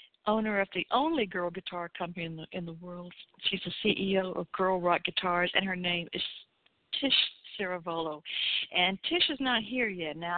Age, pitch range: 60-79, 175-215 Hz